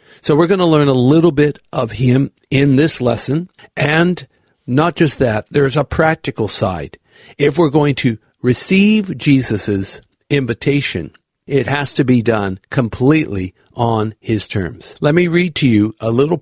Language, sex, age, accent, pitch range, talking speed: English, male, 60-79, American, 115-155 Hz, 160 wpm